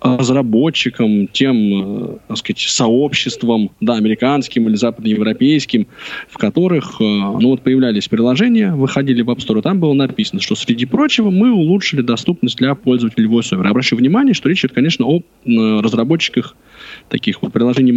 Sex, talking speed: male, 135 wpm